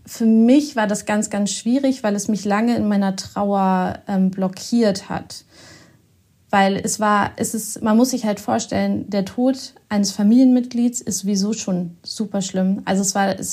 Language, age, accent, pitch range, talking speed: German, 30-49, German, 200-235 Hz, 175 wpm